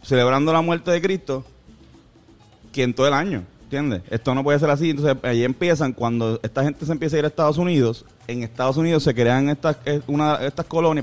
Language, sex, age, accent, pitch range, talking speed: Spanish, male, 30-49, Venezuelan, 120-165 Hz, 200 wpm